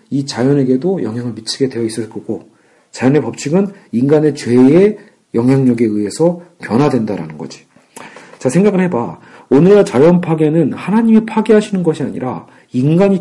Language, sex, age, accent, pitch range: Korean, male, 40-59, native, 130-195 Hz